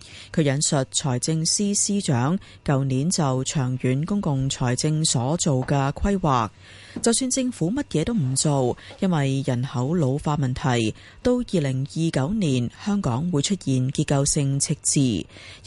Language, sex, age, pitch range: Chinese, female, 30-49, 130-180 Hz